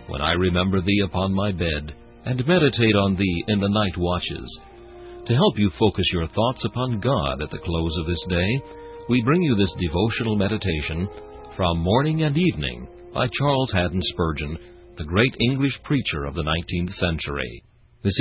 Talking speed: 170 wpm